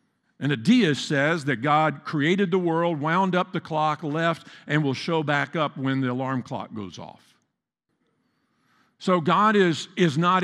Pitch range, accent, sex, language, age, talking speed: 150-195 Hz, American, male, English, 50-69, 170 wpm